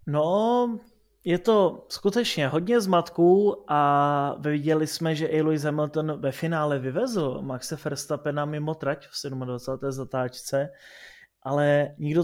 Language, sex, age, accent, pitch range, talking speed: Czech, male, 20-39, native, 145-175 Hz, 125 wpm